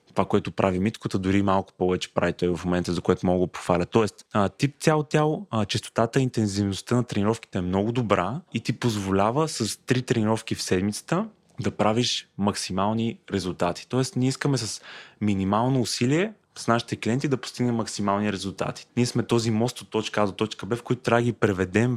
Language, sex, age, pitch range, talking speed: Bulgarian, male, 20-39, 100-125 Hz, 190 wpm